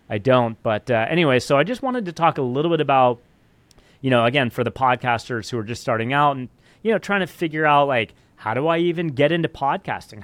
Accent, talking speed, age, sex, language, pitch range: American, 240 wpm, 30-49, male, English, 115-145 Hz